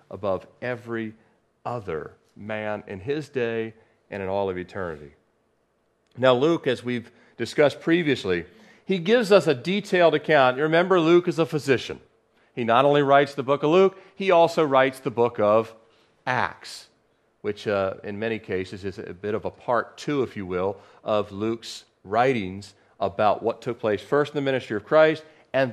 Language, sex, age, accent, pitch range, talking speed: English, male, 40-59, American, 115-165 Hz, 175 wpm